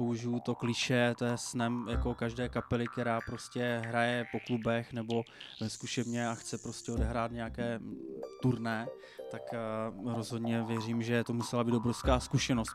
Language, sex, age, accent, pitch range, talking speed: Czech, male, 20-39, native, 110-130 Hz, 145 wpm